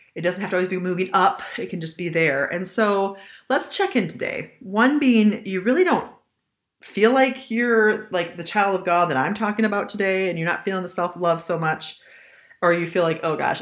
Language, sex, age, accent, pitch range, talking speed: English, female, 30-49, American, 165-215 Hz, 225 wpm